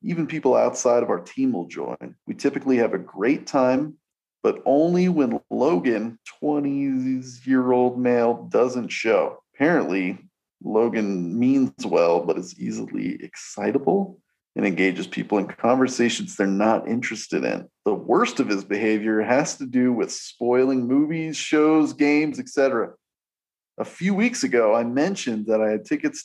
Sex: male